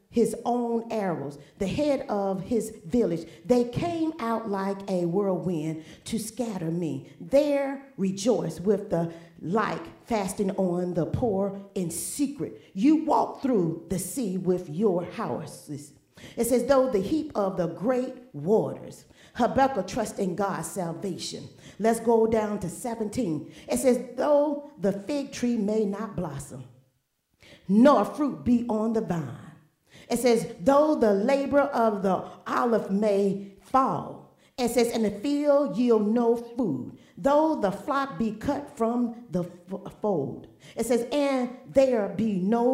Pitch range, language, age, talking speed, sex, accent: 185-250 Hz, English, 40-59, 145 wpm, female, American